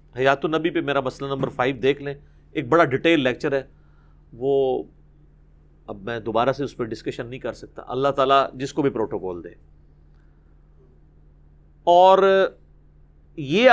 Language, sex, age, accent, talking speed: English, male, 40-59, Indian, 150 wpm